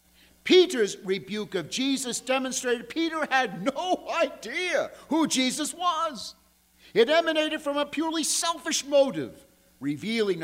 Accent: American